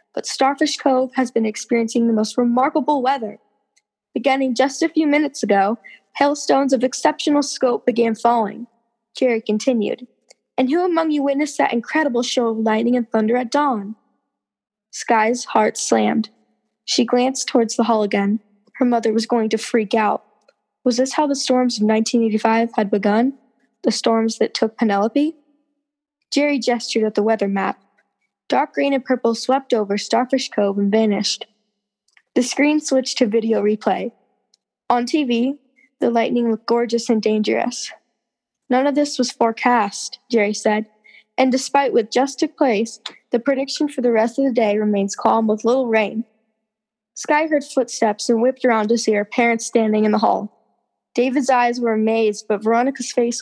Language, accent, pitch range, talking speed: English, American, 220-265 Hz, 165 wpm